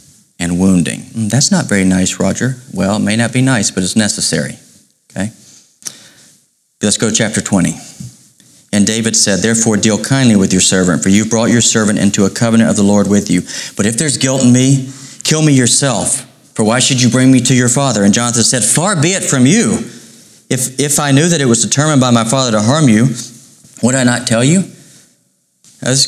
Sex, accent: male, American